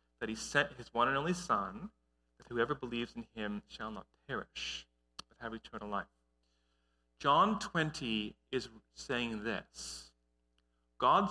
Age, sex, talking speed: 40-59, male, 140 wpm